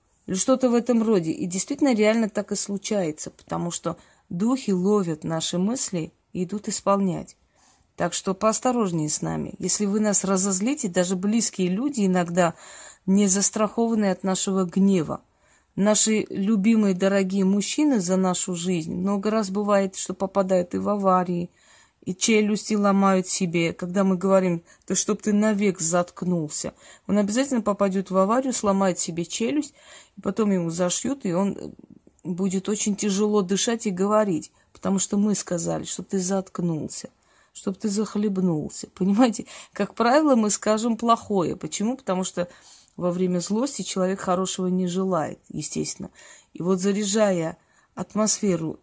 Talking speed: 140 wpm